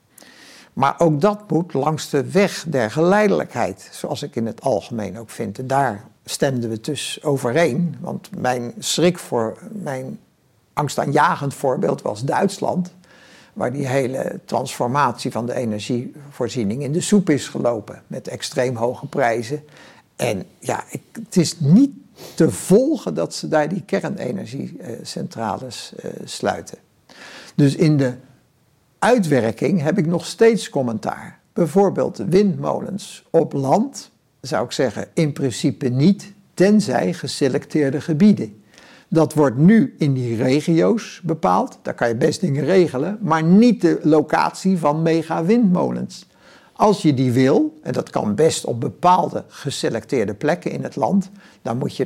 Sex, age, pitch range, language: male, 60-79, 130-190 Hz, Dutch